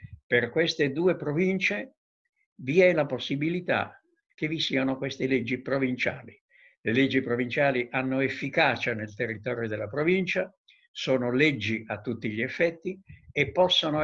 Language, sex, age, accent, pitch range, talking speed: Italian, male, 60-79, native, 120-160 Hz, 130 wpm